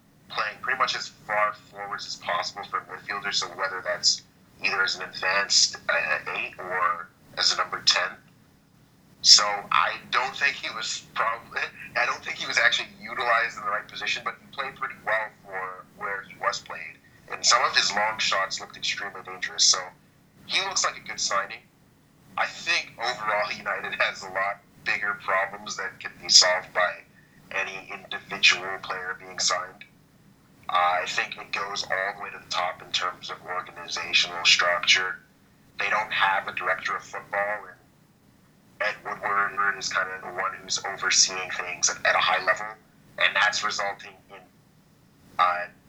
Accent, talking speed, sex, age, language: American, 170 wpm, male, 30-49, English